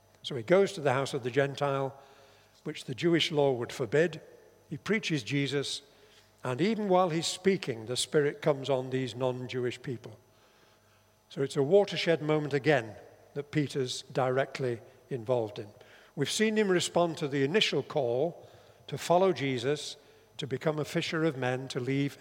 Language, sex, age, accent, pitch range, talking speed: English, male, 50-69, British, 120-165 Hz, 160 wpm